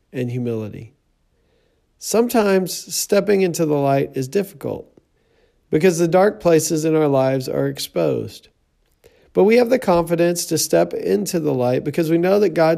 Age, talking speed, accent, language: 40-59, 155 wpm, American, English